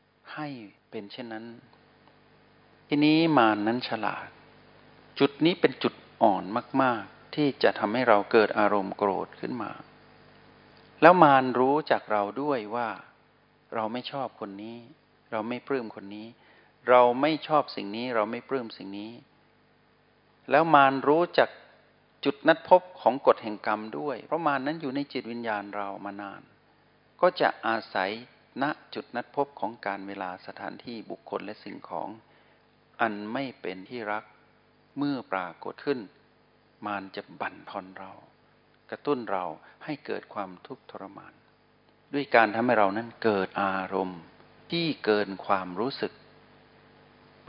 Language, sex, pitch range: Thai, male, 100-140 Hz